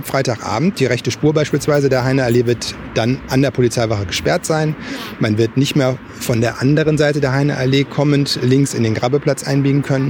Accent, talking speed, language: German, 185 wpm, German